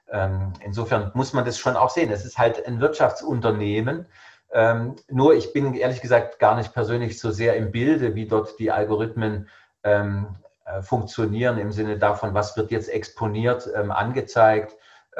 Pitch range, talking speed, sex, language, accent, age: 105-120 Hz, 145 wpm, male, German, German, 40-59